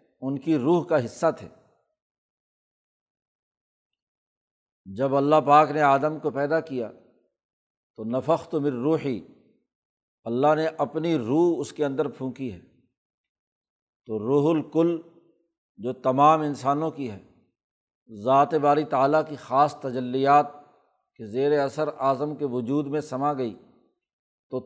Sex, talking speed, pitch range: male, 125 wpm, 135-155 Hz